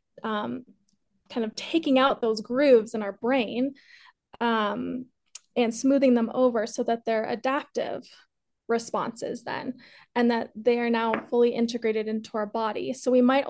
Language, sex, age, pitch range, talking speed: English, female, 20-39, 225-255 Hz, 150 wpm